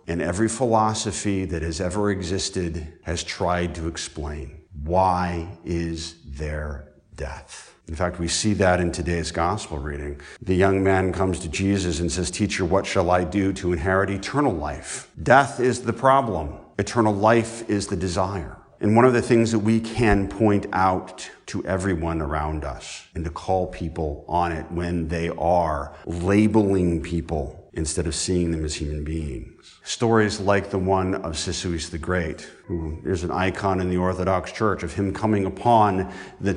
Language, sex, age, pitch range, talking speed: English, male, 50-69, 85-105 Hz, 170 wpm